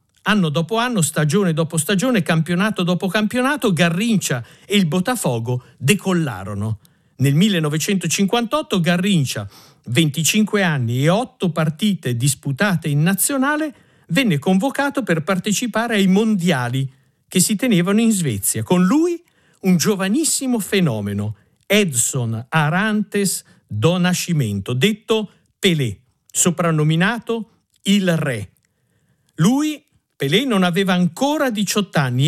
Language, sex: Italian, male